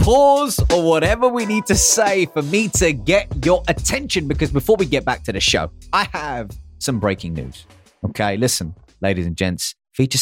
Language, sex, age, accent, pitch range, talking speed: English, male, 30-49, British, 100-150 Hz, 190 wpm